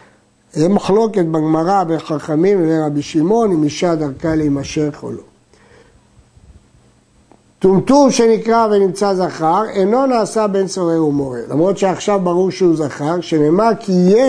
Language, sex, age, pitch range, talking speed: Hebrew, male, 60-79, 160-215 Hz, 125 wpm